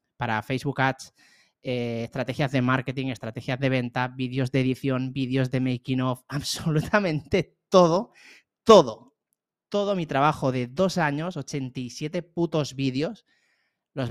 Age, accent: 20-39, Spanish